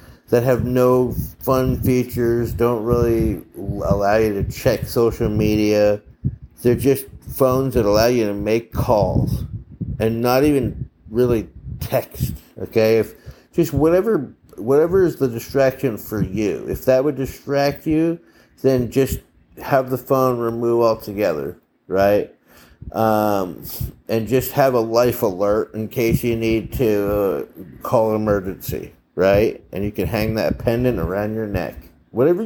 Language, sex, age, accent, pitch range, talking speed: English, male, 50-69, American, 100-125 Hz, 140 wpm